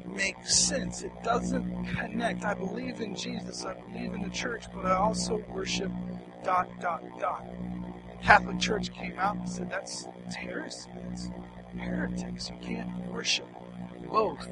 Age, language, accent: 40-59, English, American